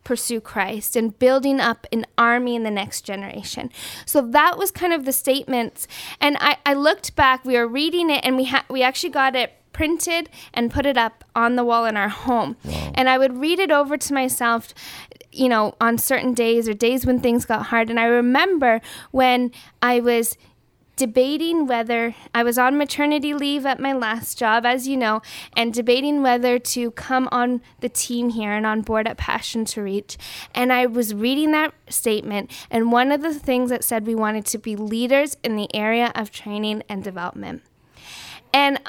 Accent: American